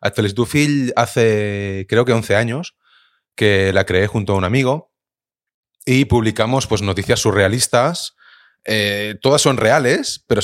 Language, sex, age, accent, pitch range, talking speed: Spanish, male, 30-49, Spanish, 100-120 Hz, 130 wpm